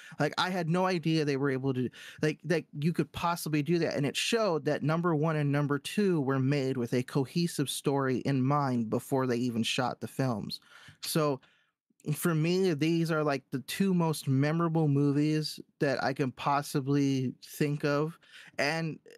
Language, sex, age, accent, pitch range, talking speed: English, male, 20-39, American, 135-160 Hz, 180 wpm